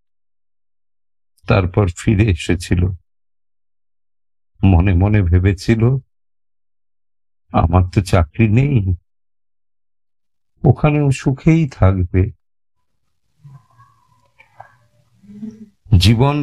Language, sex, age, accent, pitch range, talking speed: Hindi, male, 50-69, native, 90-120 Hz, 35 wpm